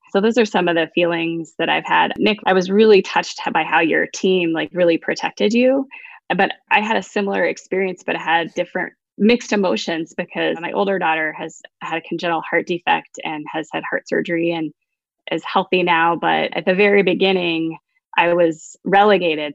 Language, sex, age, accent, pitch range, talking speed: English, female, 20-39, American, 165-195 Hz, 185 wpm